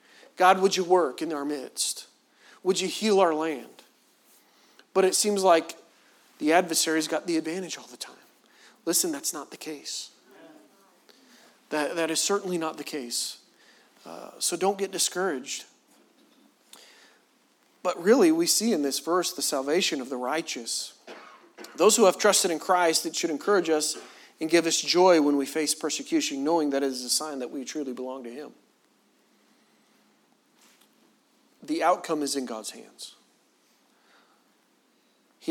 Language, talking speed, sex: English, 150 wpm, male